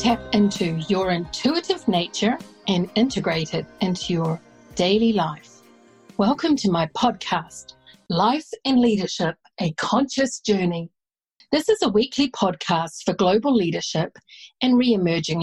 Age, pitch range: 50-69, 175-230 Hz